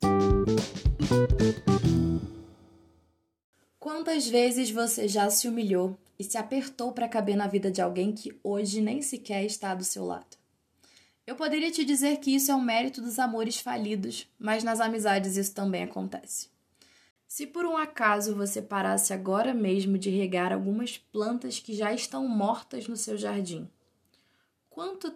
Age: 20-39